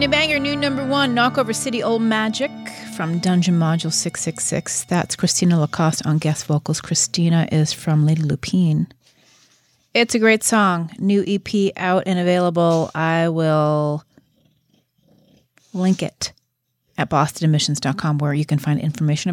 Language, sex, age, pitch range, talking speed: English, female, 30-49, 155-200 Hz, 135 wpm